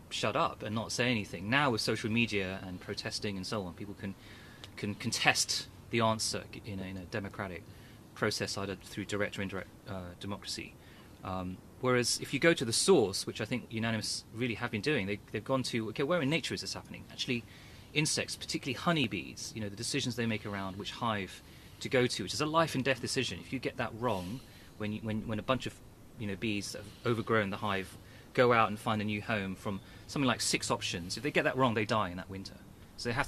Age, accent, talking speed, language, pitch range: 30-49, British, 230 wpm, English, 100-125 Hz